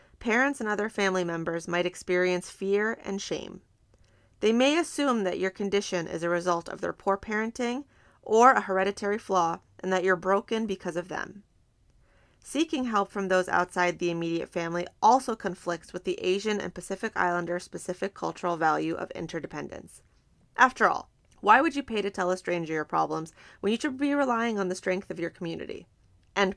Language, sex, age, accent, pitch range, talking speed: English, female, 30-49, American, 180-215 Hz, 175 wpm